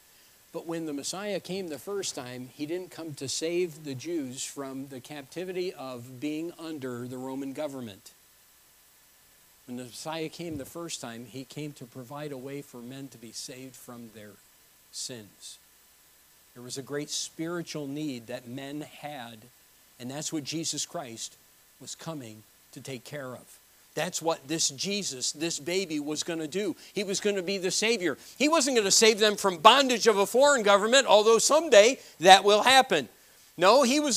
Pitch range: 140-220 Hz